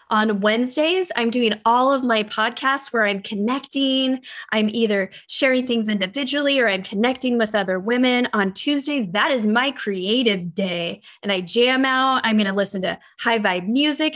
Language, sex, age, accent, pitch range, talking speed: English, female, 10-29, American, 200-260 Hz, 175 wpm